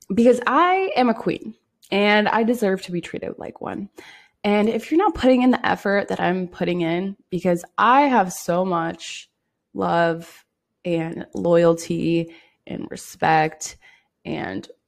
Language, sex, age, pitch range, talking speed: English, female, 20-39, 170-235 Hz, 145 wpm